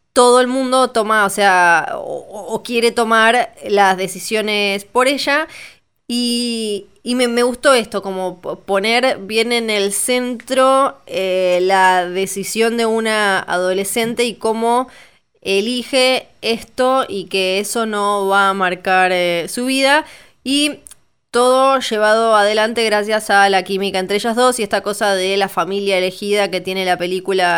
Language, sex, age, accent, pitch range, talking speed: Spanish, female, 20-39, Argentinian, 185-230 Hz, 150 wpm